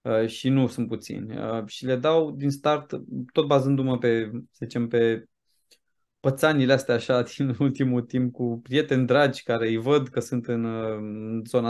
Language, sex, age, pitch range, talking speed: Romanian, male, 20-39, 125-165 Hz, 160 wpm